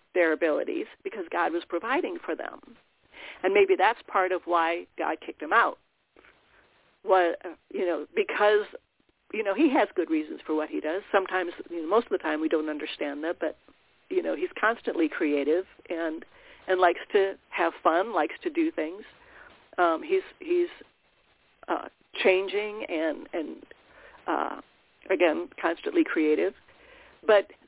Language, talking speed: English, 155 wpm